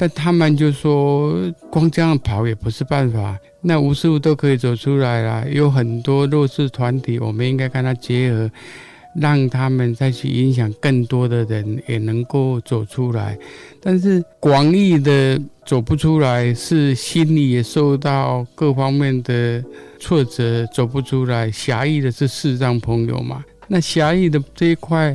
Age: 50-69